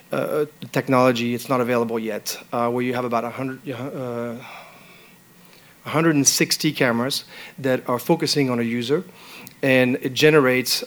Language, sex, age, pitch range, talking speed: English, male, 40-59, 120-145 Hz, 135 wpm